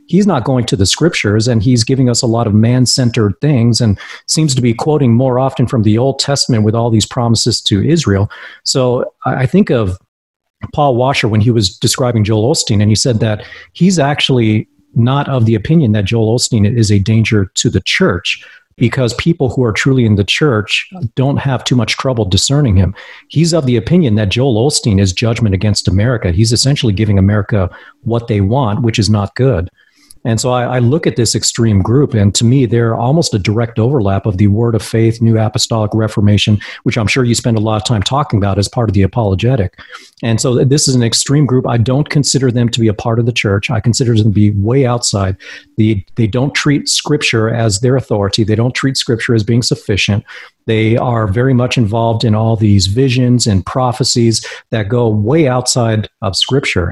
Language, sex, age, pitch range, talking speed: English, male, 40-59, 110-130 Hz, 210 wpm